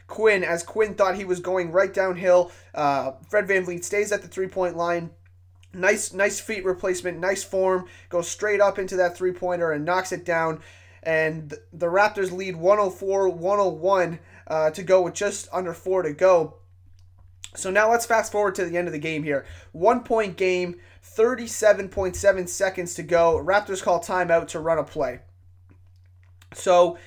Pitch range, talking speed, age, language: 165-200 Hz, 160 wpm, 20-39, English